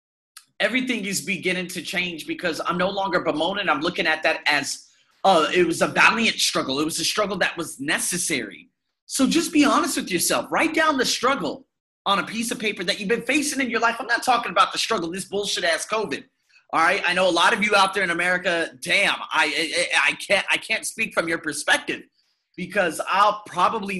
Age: 30-49